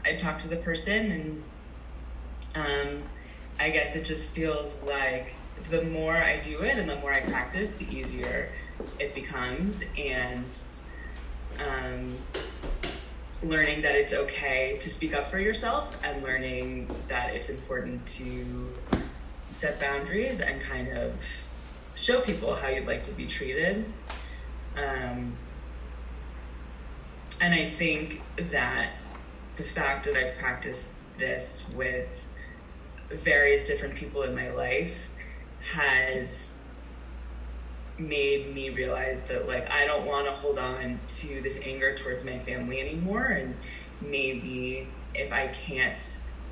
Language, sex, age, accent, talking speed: English, female, 20-39, American, 125 wpm